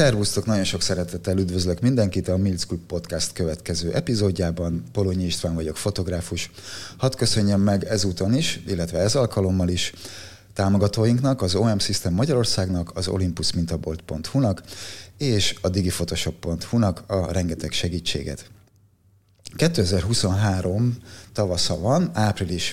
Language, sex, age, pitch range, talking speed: Hungarian, male, 30-49, 90-110 Hz, 115 wpm